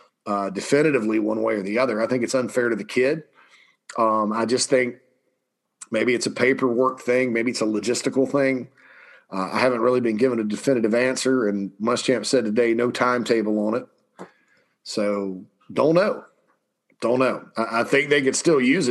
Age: 40-59